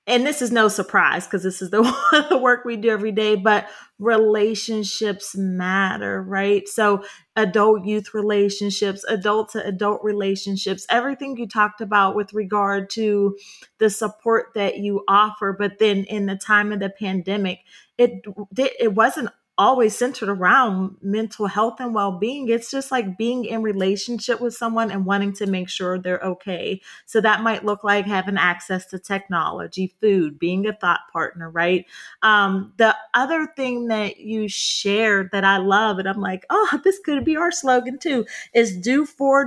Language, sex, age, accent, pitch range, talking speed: English, female, 30-49, American, 190-225 Hz, 165 wpm